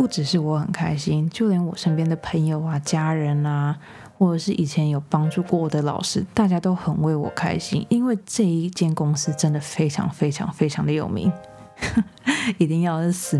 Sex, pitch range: female, 155-190 Hz